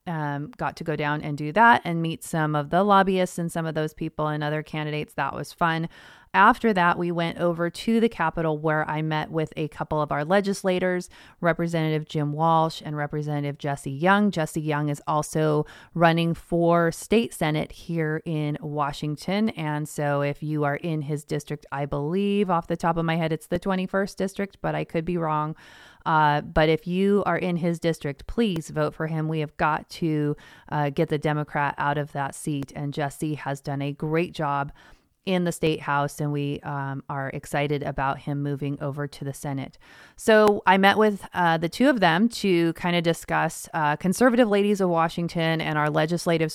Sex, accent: female, American